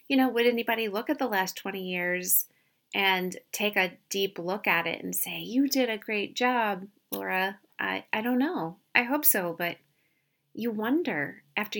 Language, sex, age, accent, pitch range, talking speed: English, female, 30-49, American, 170-200 Hz, 185 wpm